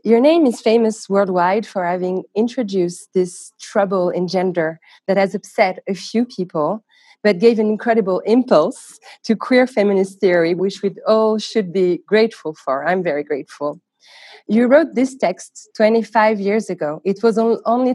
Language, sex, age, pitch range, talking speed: French, female, 30-49, 185-240 Hz, 155 wpm